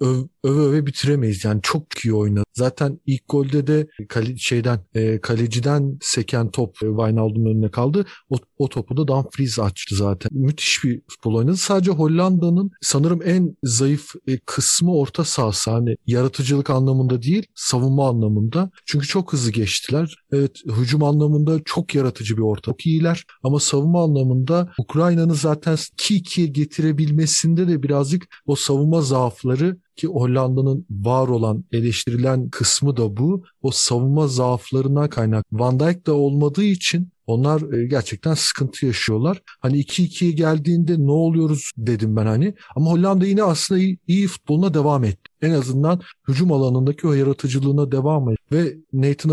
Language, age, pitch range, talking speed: Turkish, 40-59, 125-160 Hz, 150 wpm